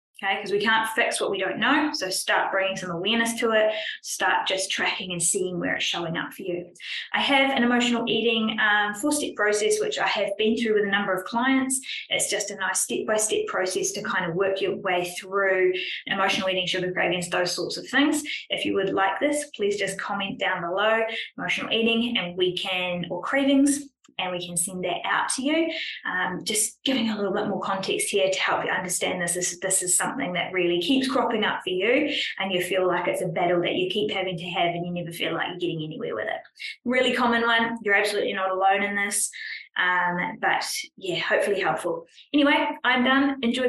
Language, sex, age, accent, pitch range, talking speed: English, female, 20-39, Australian, 185-245 Hz, 215 wpm